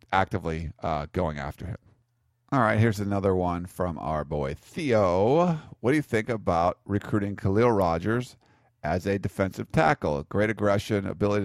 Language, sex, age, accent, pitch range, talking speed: English, male, 40-59, American, 85-110 Hz, 150 wpm